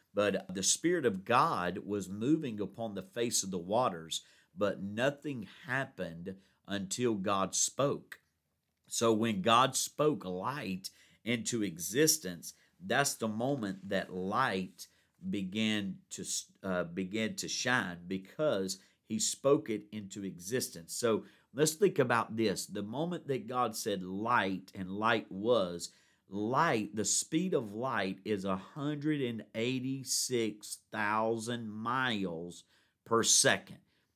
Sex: male